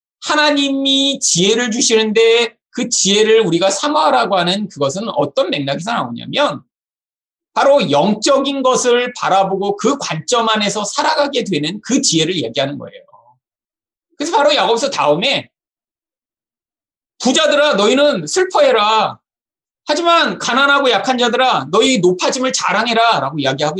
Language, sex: Korean, male